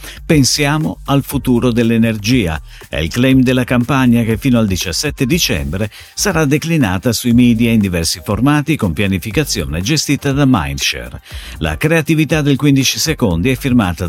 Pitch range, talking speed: 90-140 Hz, 140 wpm